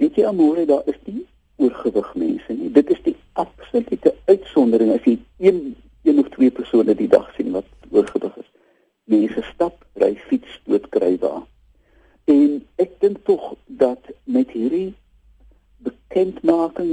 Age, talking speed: 60-79, 150 wpm